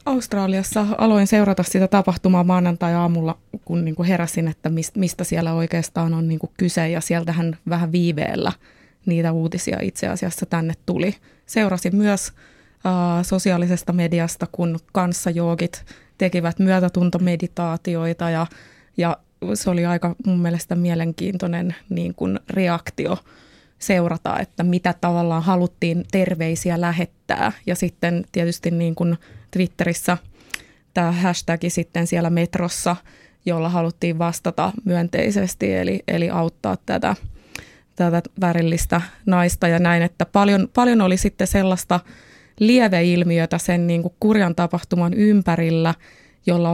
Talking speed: 115 wpm